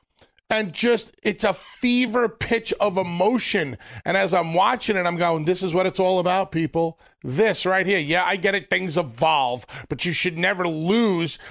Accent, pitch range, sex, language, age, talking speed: American, 135-185 Hz, male, English, 40-59, 190 wpm